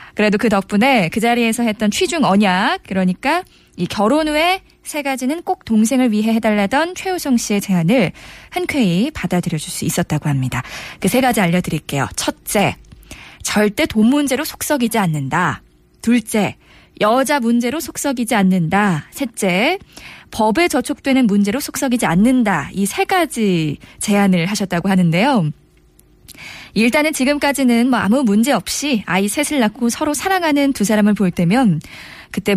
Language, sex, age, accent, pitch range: Korean, female, 20-39, native, 190-270 Hz